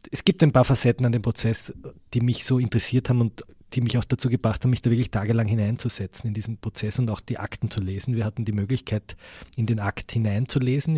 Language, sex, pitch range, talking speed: German, male, 110-125 Hz, 230 wpm